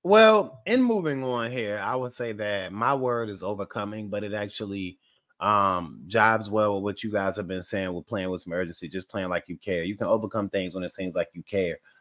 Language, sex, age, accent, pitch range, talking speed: English, male, 30-49, American, 110-135 Hz, 230 wpm